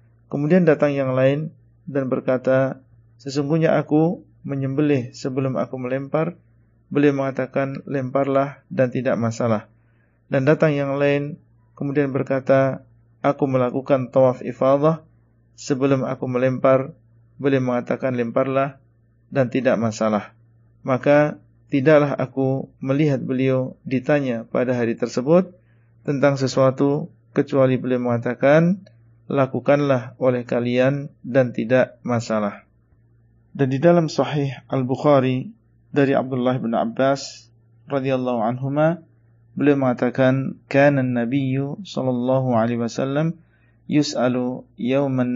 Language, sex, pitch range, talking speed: Indonesian, male, 120-140 Hz, 100 wpm